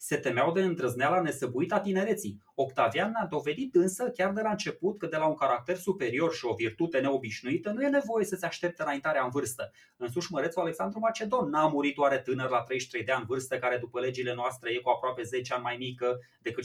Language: Romanian